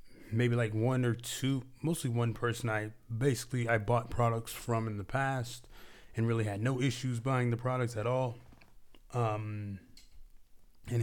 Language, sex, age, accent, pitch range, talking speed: English, male, 20-39, American, 105-125 Hz, 160 wpm